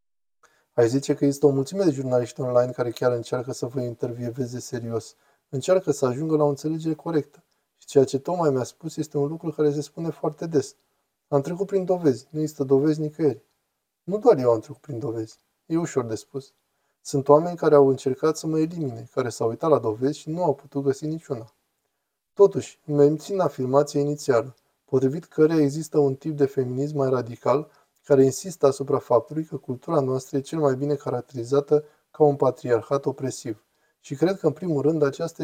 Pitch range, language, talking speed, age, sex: 130-155 Hz, Romanian, 190 wpm, 20-39, male